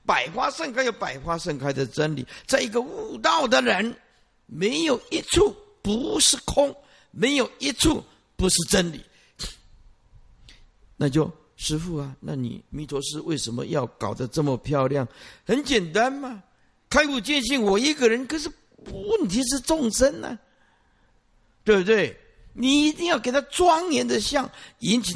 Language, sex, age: Chinese, male, 50-69